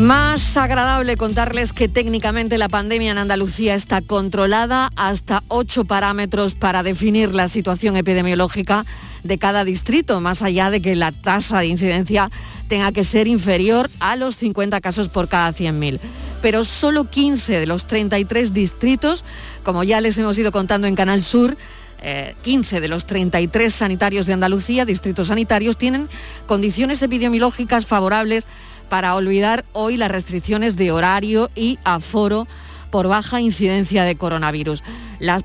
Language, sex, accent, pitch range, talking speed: Spanish, female, Spanish, 190-230 Hz, 145 wpm